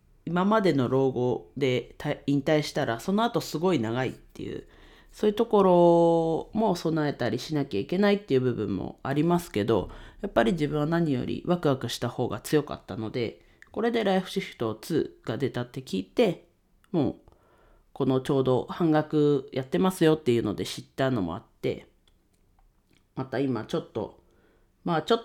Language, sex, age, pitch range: Japanese, female, 40-59, 105-150 Hz